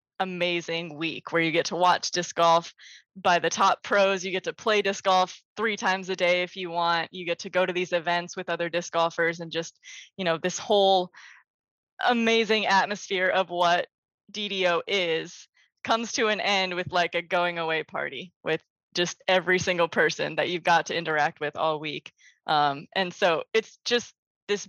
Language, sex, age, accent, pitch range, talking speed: English, female, 20-39, American, 170-200 Hz, 190 wpm